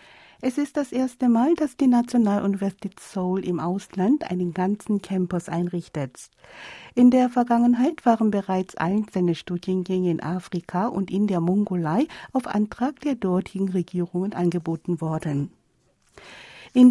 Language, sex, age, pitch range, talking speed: German, female, 60-79, 180-235 Hz, 130 wpm